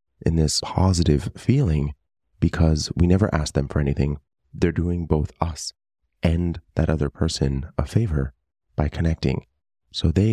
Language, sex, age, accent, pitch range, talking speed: English, male, 30-49, American, 70-85 Hz, 145 wpm